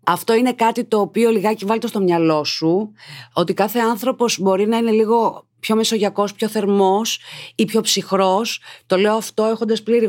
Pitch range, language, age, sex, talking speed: 160-230 Hz, Greek, 30-49, female, 170 wpm